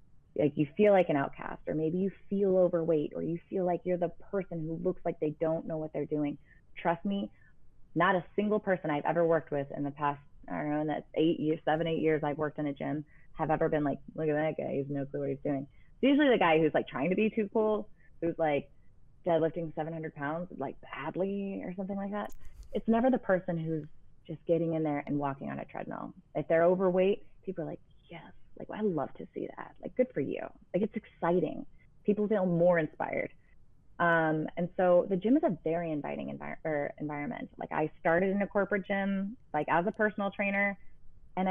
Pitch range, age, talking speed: 150-200 Hz, 20-39, 225 wpm